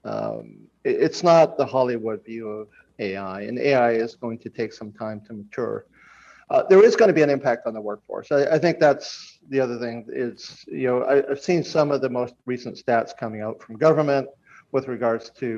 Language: English